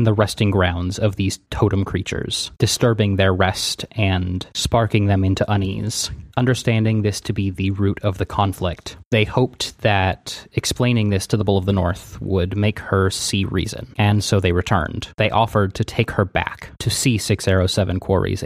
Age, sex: 20-39, male